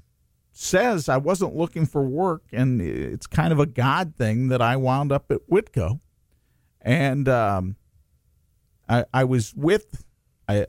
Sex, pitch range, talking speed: male, 110-155 Hz, 145 wpm